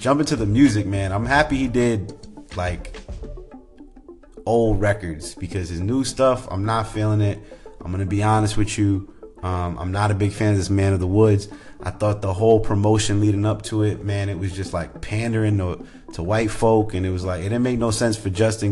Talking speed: 220 wpm